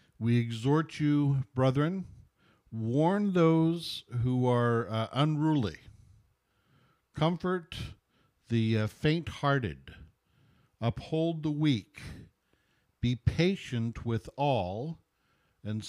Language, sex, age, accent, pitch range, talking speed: English, male, 60-79, American, 110-150 Hz, 85 wpm